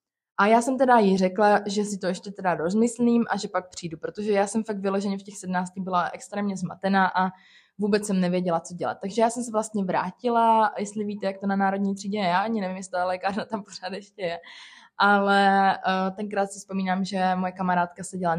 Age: 20-39